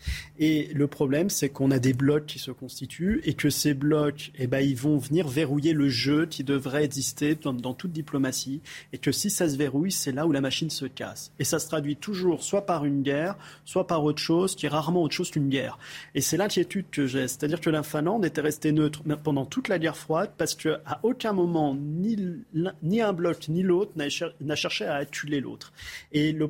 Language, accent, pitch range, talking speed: French, French, 145-175 Hz, 220 wpm